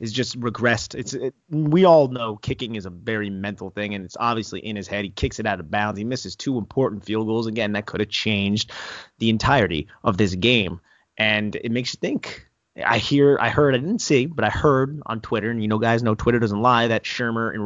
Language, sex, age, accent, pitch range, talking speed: English, male, 30-49, American, 105-125 Hz, 245 wpm